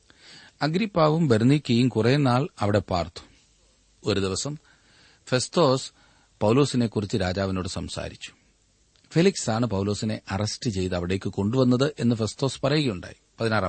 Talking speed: 90 wpm